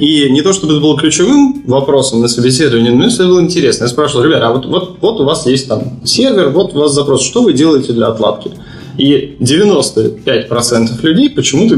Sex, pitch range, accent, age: male, 120-150 Hz, native, 20-39